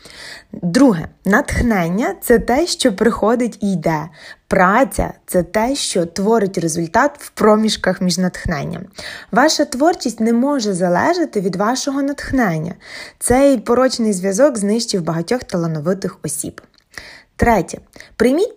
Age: 20-39